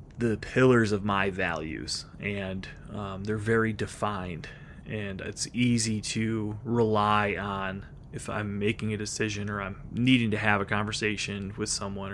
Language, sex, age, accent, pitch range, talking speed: English, male, 30-49, American, 100-120 Hz, 150 wpm